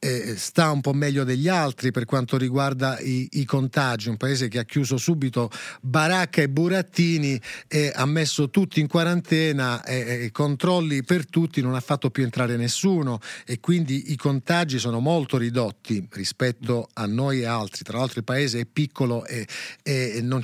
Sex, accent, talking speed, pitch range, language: male, native, 175 wpm, 130-170 Hz, Italian